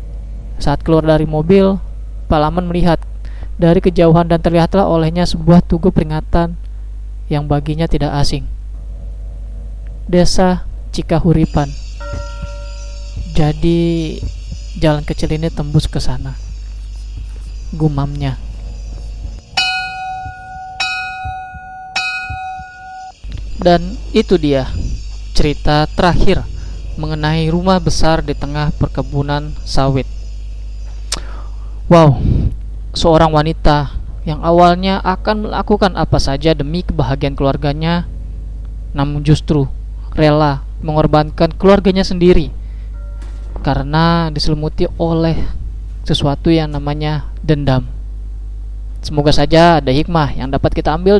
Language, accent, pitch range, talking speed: Indonesian, native, 125-170 Hz, 85 wpm